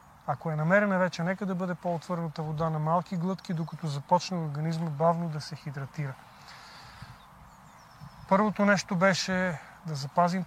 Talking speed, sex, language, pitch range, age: 145 wpm, male, Bulgarian, 160-180 Hz, 40-59